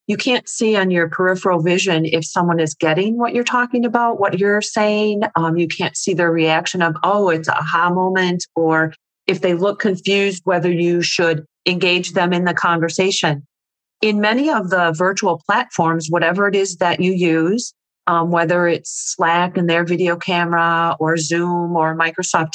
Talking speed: 175 wpm